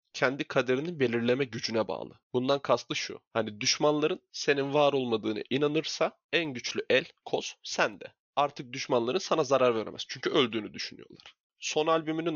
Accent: native